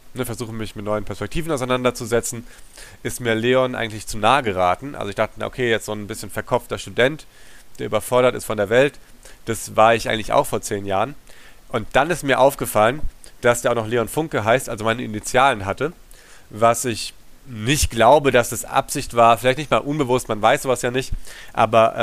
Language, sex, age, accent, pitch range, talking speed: German, male, 40-59, German, 110-130 Hz, 195 wpm